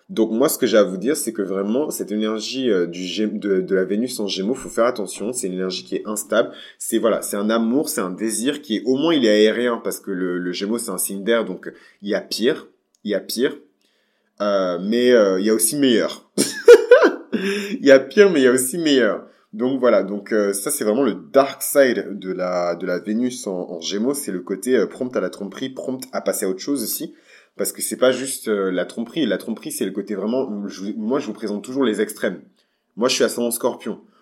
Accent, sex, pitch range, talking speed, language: French, male, 95-125 Hz, 255 wpm, French